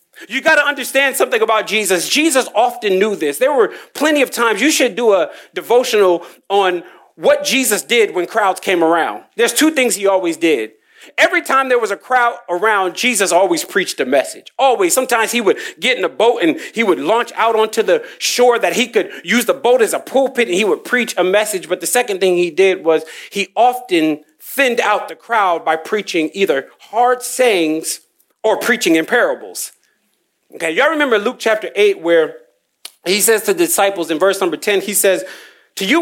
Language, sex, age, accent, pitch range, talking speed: English, male, 40-59, American, 195-310 Hz, 200 wpm